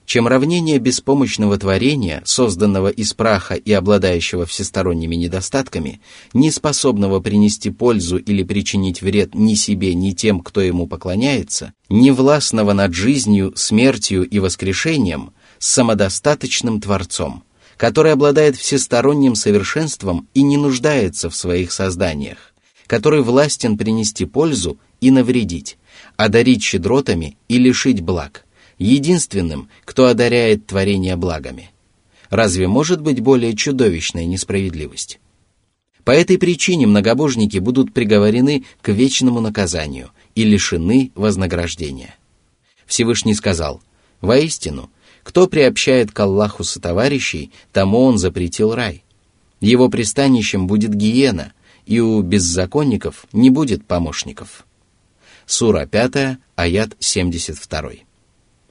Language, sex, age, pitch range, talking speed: Russian, male, 30-49, 95-125 Hz, 105 wpm